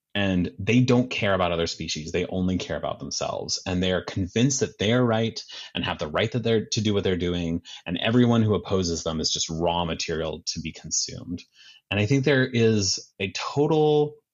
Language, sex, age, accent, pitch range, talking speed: English, male, 30-49, American, 85-105 Hz, 205 wpm